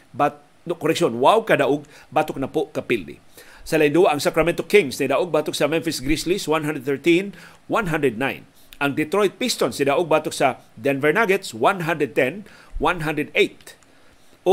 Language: Filipino